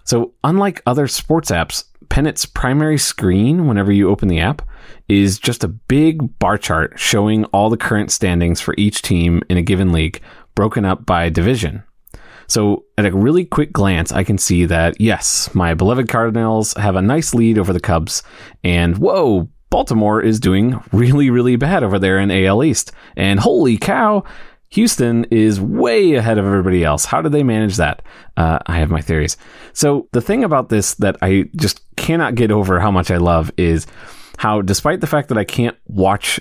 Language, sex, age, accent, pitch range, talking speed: English, male, 30-49, American, 90-115 Hz, 185 wpm